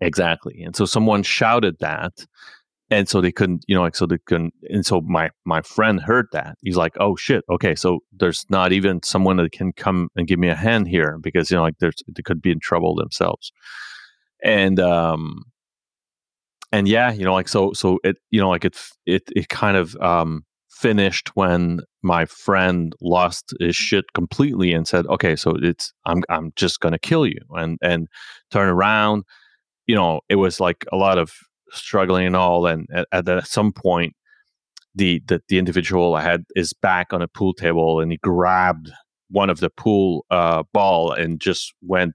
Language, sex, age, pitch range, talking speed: English, male, 30-49, 85-95 Hz, 195 wpm